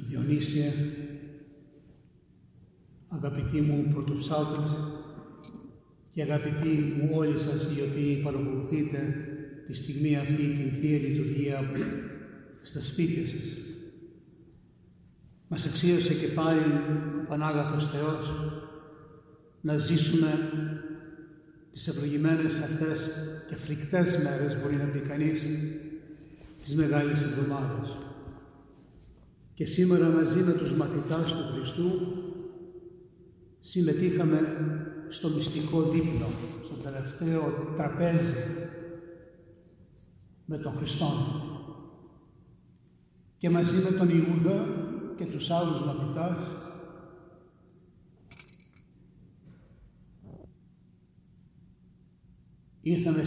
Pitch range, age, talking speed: 150-165 Hz, 60-79, 80 wpm